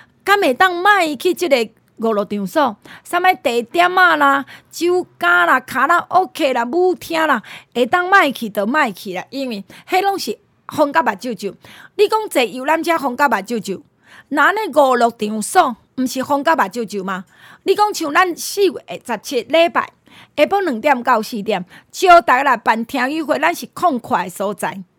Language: Chinese